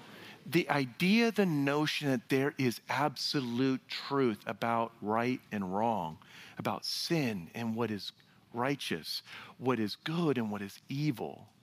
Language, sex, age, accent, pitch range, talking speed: English, male, 40-59, American, 120-175 Hz, 135 wpm